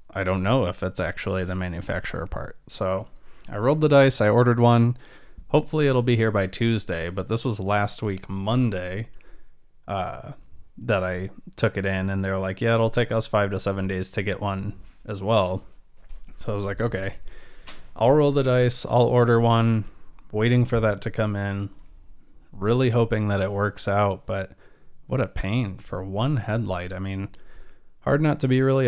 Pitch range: 95-115 Hz